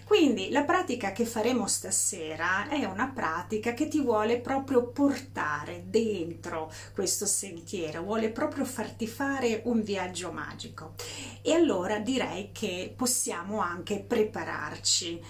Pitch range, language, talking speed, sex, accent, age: 185-245 Hz, Italian, 120 wpm, female, native, 40-59